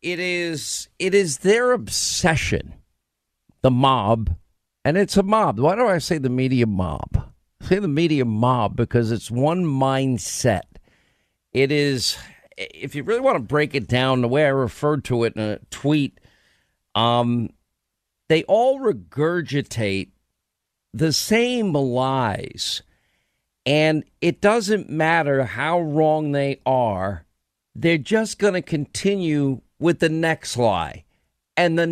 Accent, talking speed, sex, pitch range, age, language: American, 135 wpm, male, 110-160 Hz, 50-69, English